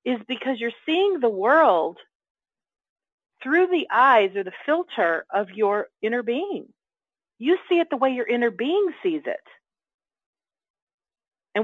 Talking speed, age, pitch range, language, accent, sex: 140 wpm, 40-59, 215-300 Hz, English, American, female